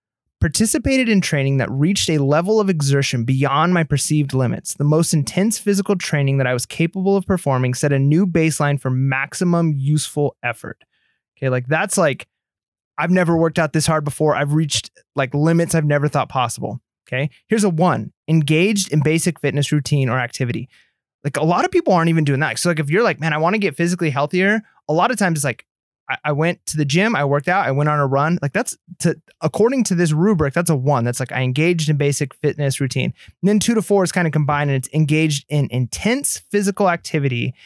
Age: 20-39